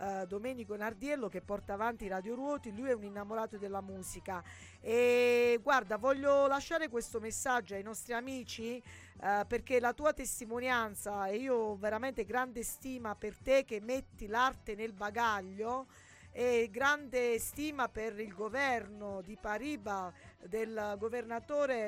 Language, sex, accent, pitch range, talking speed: Italian, female, native, 215-260 Hz, 140 wpm